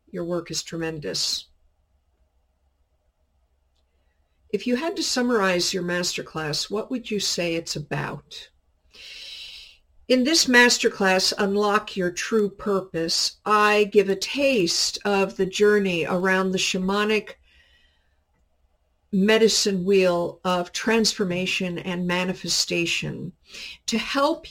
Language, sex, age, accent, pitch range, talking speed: English, female, 50-69, American, 170-220 Hz, 105 wpm